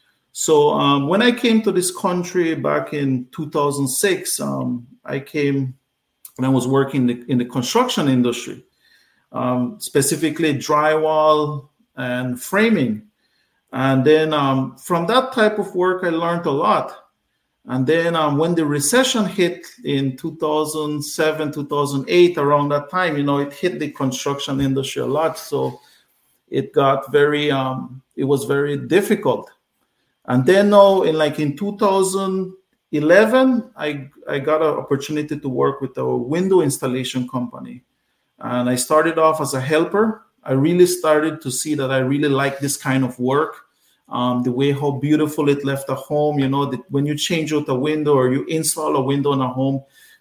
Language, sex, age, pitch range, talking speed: English, male, 50-69, 135-160 Hz, 165 wpm